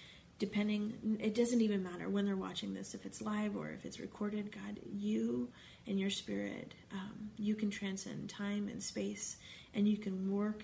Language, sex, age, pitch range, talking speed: English, female, 30-49, 195-215 Hz, 180 wpm